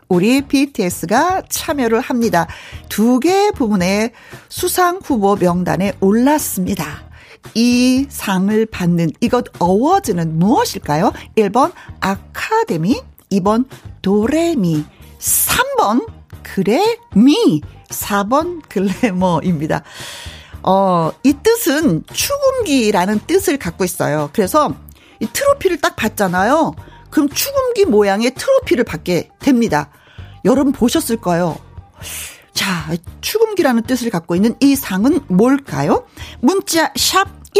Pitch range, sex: 180-285 Hz, female